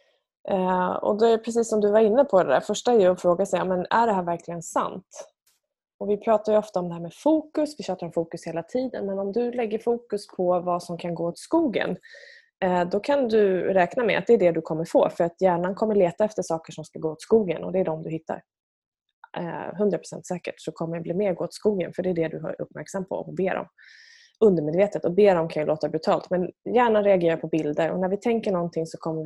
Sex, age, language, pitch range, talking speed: female, 20-39, Swedish, 170-225 Hz, 250 wpm